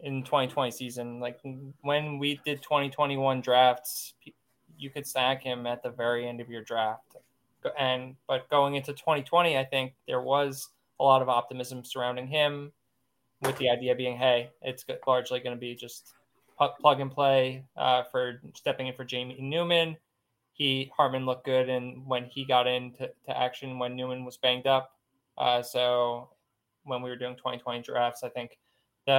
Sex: male